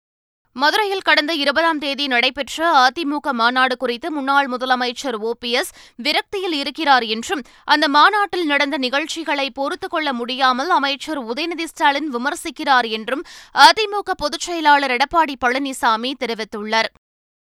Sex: female